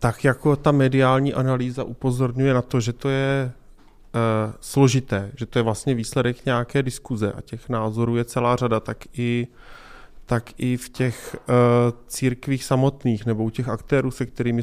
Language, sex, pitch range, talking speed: Czech, male, 115-130 Hz, 155 wpm